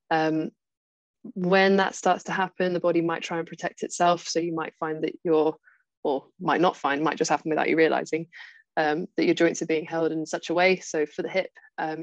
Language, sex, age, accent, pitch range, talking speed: English, female, 20-39, British, 165-185 Hz, 225 wpm